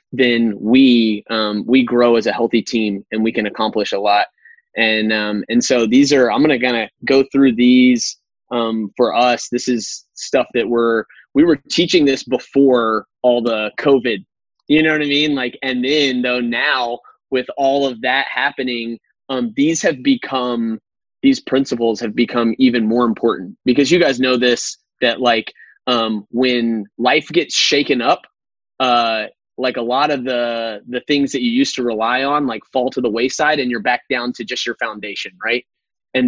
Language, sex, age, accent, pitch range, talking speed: German, male, 20-39, American, 115-130 Hz, 185 wpm